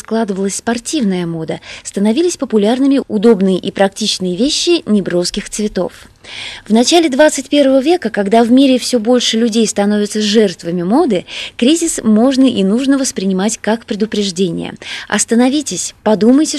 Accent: native